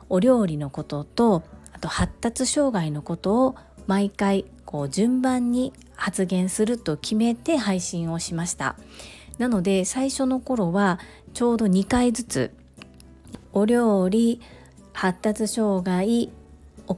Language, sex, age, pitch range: Japanese, female, 40-59, 175-230 Hz